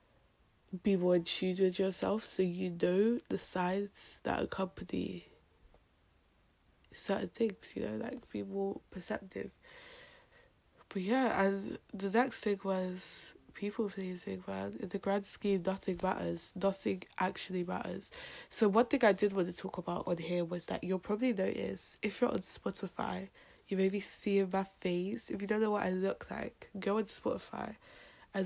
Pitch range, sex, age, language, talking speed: 185-205 Hz, female, 20-39, English, 165 wpm